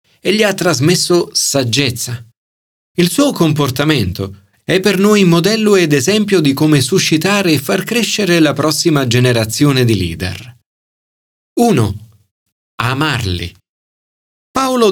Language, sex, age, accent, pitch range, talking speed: Italian, male, 40-59, native, 110-170 Hz, 115 wpm